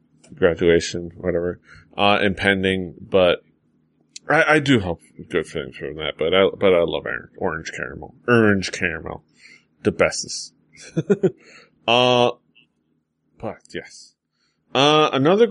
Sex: male